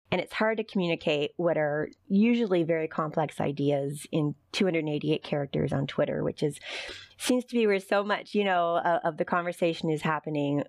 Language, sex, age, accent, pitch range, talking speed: English, female, 30-49, American, 150-200 Hz, 175 wpm